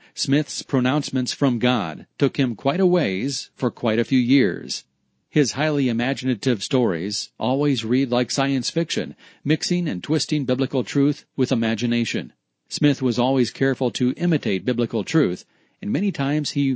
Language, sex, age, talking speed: English, male, 40-59, 150 wpm